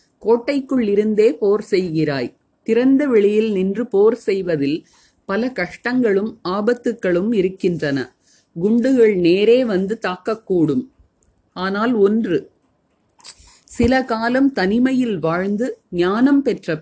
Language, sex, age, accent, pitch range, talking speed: Tamil, female, 30-49, native, 180-235 Hz, 90 wpm